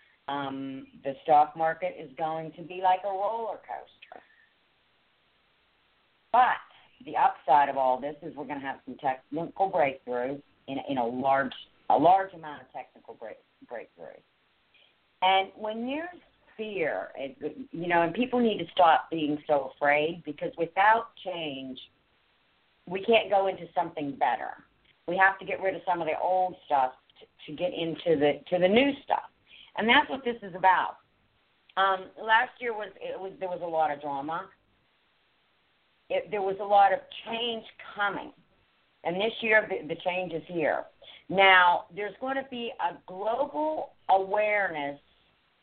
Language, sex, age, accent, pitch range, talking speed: English, female, 50-69, American, 160-210 Hz, 160 wpm